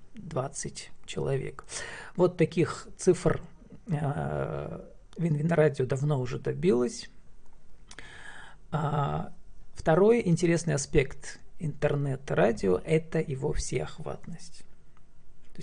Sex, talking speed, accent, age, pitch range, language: male, 80 wpm, native, 40-59, 135-165 Hz, Russian